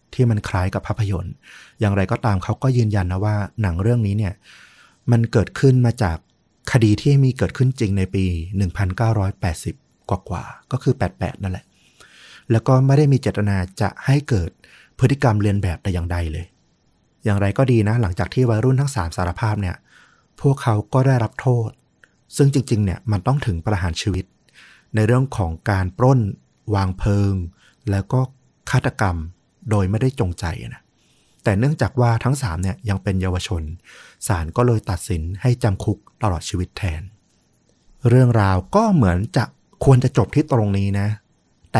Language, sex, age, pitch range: Thai, male, 30-49, 95-120 Hz